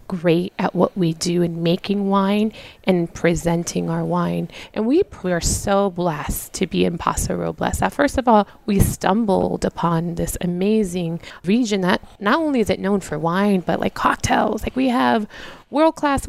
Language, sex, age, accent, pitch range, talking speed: English, female, 20-39, American, 175-230 Hz, 175 wpm